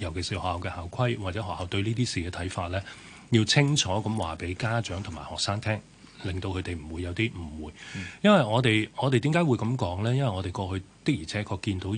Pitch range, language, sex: 90-120 Hz, Chinese, male